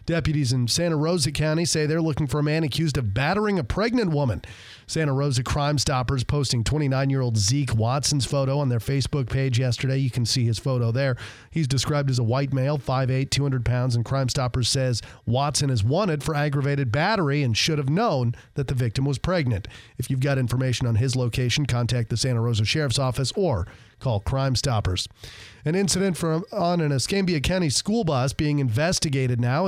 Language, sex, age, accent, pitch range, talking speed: English, male, 40-59, American, 125-155 Hz, 195 wpm